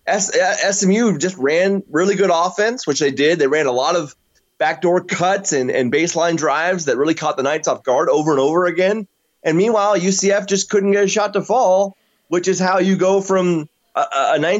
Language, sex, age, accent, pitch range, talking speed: English, male, 20-39, American, 160-210 Hz, 195 wpm